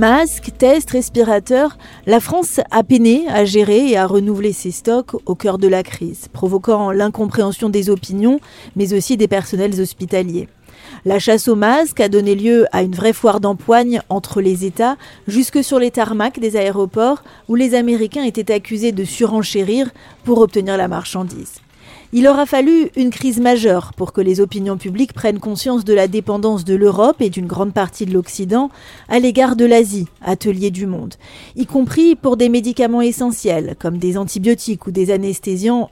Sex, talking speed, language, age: female, 170 wpm, French, 40-59